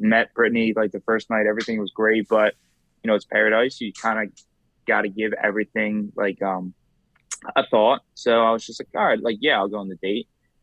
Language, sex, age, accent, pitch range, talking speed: English, male, 20-39, American, 100-110 Hz, 220 wpm